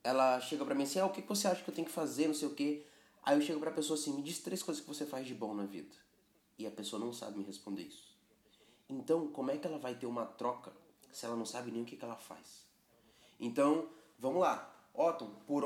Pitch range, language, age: 125-185 Hz, Portuguese, 20-39